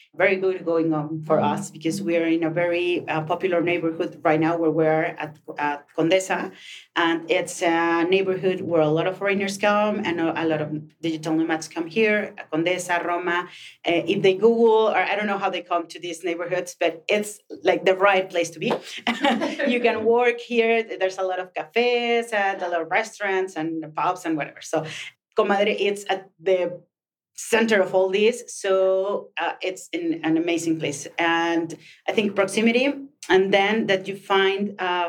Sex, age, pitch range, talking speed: female, 30-49, 165-200 Hz, 185 wpm